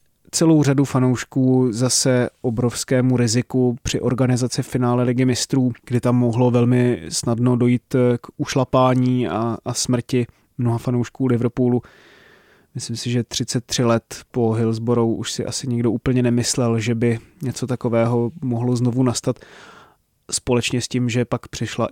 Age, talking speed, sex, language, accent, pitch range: 20-39, 140 wpm, male, Czech, native, 115-130 Hz